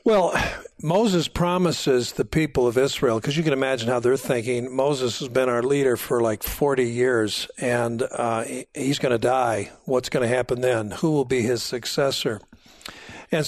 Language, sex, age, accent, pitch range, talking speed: English, male, 50-69, American, 125-155 Hz, 180 wpm